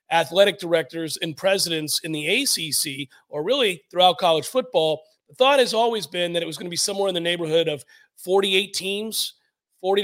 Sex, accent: male, American